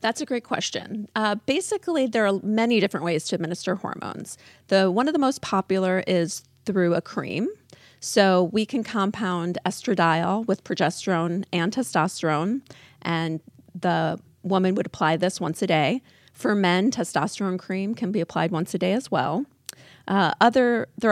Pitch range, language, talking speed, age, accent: 170-210 Hz, English, 160 wpm, 40-59, American